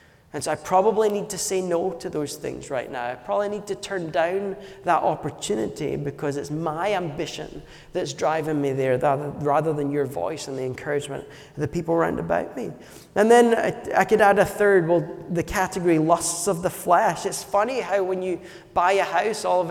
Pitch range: 155-200 Hz